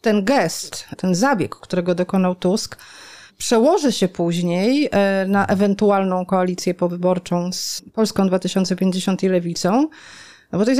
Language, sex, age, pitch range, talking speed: Polish, female, 30-49, 185-240 Hz, 120 wpm